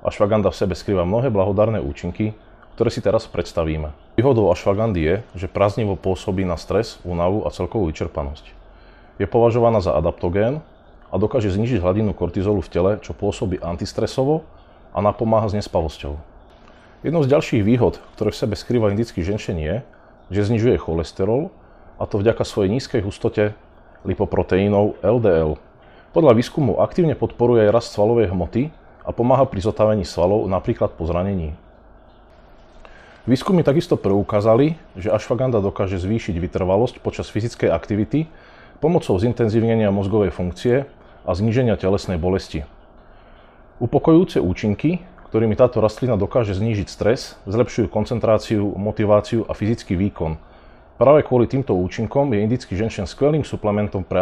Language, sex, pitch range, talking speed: Slovak, male, 90-115 Hz, 135 wpm